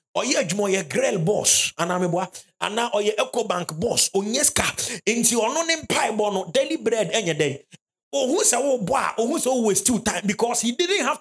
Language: English